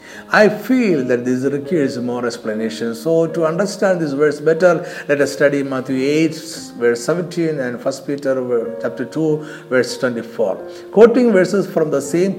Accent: native